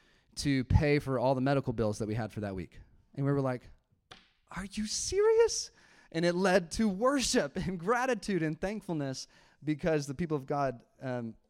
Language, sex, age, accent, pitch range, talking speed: English, male, 30-49, American, 130-180 Hz, 185 wpm